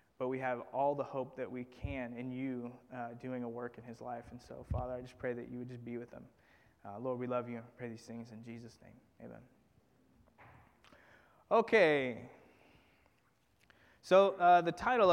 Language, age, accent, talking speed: English, 20-39, American, 195 wpm